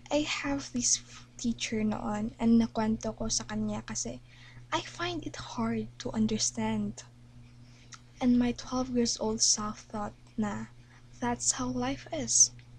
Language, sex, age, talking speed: Filipino, female, 10-29, 140 wpm